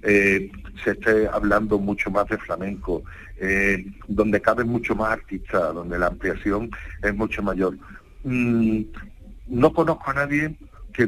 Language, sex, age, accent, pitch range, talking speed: Spanish, male, 50-69, Spanish, 100-120 Hz, 140 wpm